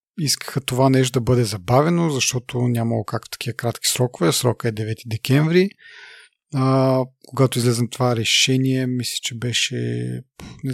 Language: Bulgarian